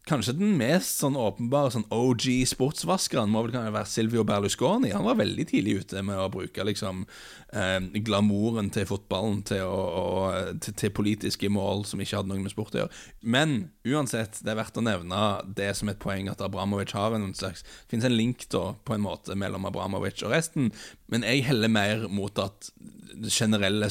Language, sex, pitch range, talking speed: English, male, 100-135 Hz, 185 wpm